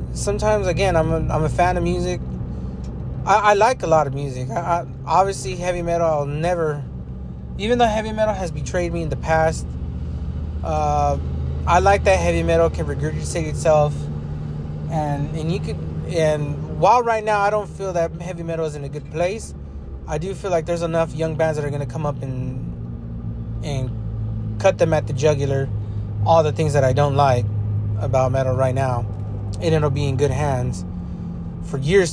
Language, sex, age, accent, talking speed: English, male, 20-39, American, 185 wpm